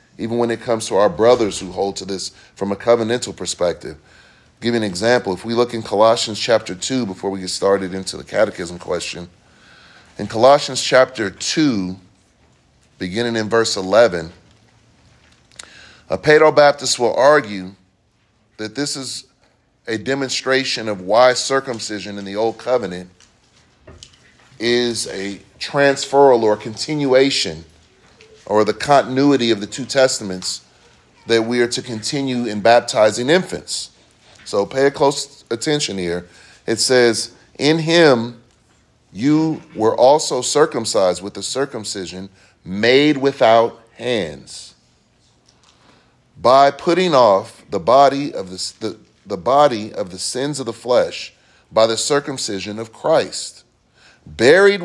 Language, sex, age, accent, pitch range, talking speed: English, male, 30-49, American, 100-135 Hz, 135 wpm